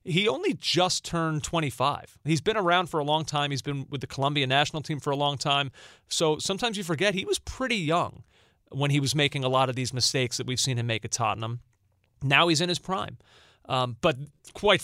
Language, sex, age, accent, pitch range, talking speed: English, male, 30-49, American, 120-160 Hz, 225 wpm